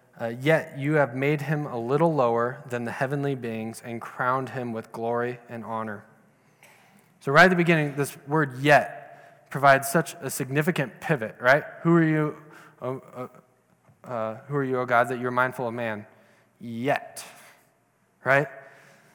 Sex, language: male, English